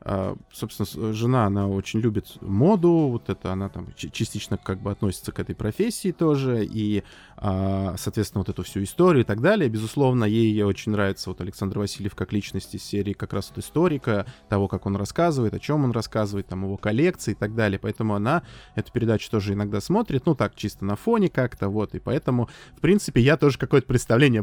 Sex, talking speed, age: male, 195 wpm, 20-39